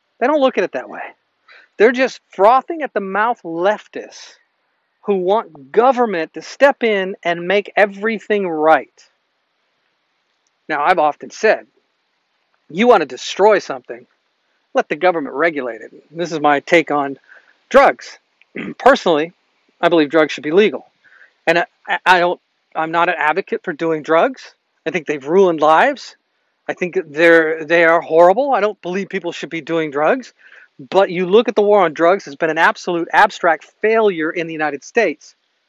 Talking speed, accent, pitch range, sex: 165 wpm, American, 160-210 Hz, male